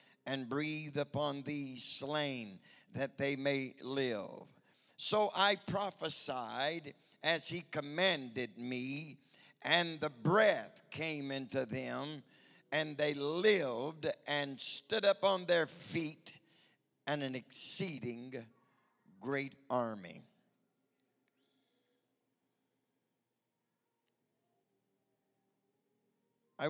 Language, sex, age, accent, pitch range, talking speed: English, male, 50-69, American, 125-150 Hz, 85 wpm